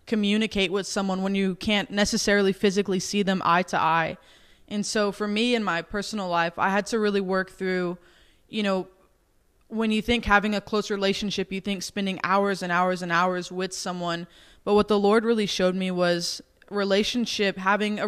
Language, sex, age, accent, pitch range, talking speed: English, female, 20-39, American, 185-210 Hz, 190 wpm